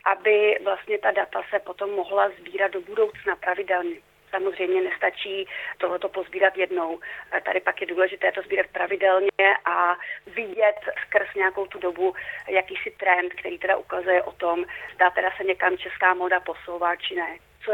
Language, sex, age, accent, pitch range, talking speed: Czech, female, 30-49, native, 190-225 Hz, 155 wpm